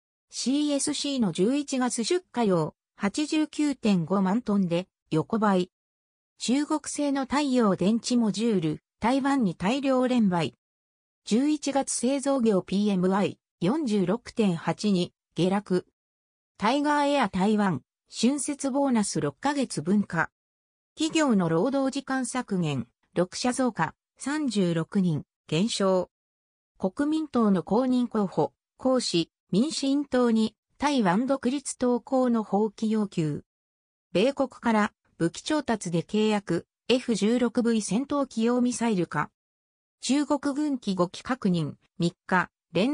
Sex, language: female, Japanese